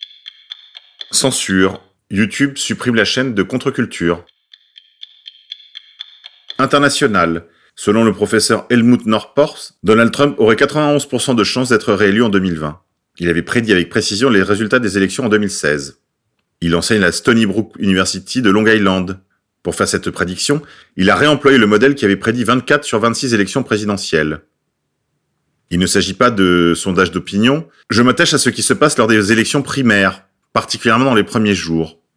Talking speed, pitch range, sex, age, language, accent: 155 wpm, 95-130 Hz, male, 40-59, French, French